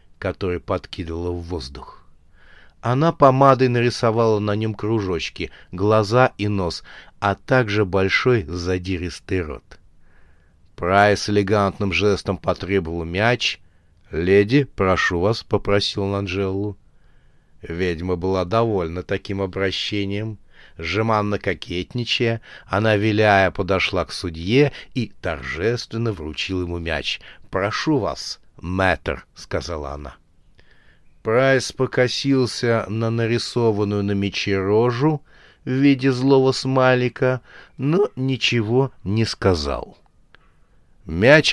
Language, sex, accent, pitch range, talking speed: Russian, male, native, 95-120 Hz, 95 wpm